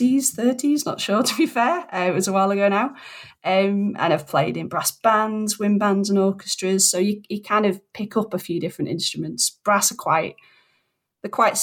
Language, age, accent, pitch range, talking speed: English, 30-49, British, 180-215 Hz, 205 wpm